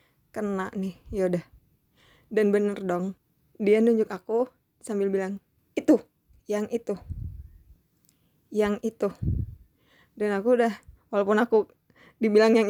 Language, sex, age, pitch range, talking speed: Indonesian, female, 20-39, 195-250 Hz, 110 wpm